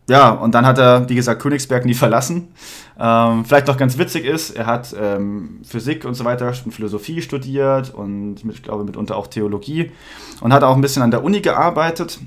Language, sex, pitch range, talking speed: German, male, 110-140 Hz, 200 wpm